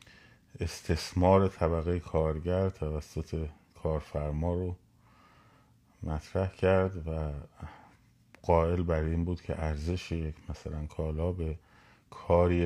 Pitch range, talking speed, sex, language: 75-90 Hz, 95 wpm, male, Persian